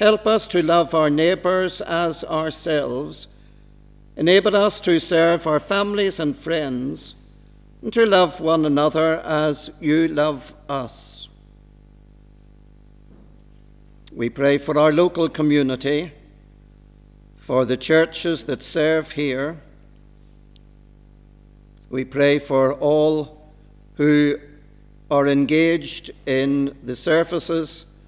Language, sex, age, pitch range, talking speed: English, male, 60-79, 145-165 Hz, 100 wpm